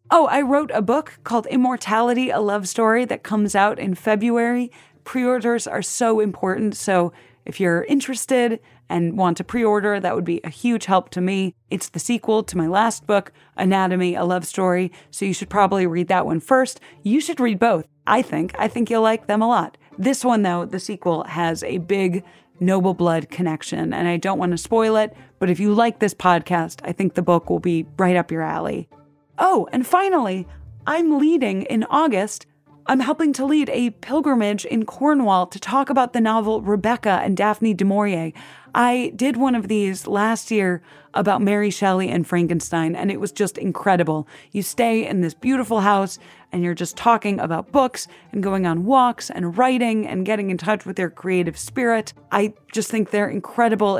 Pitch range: 175-230 Hz